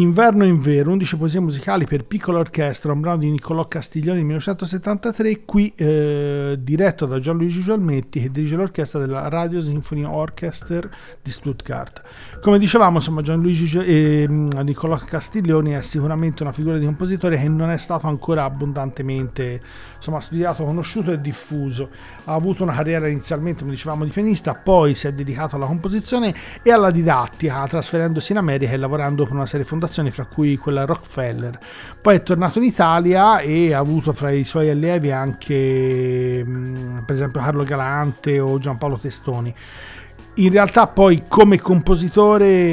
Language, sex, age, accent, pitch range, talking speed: Italian, male, 40-59, native, 145-180 Hz, 155 wpm